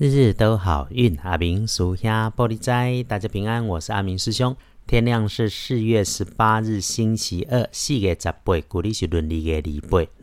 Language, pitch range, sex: Chinese, 85-115 Hz, male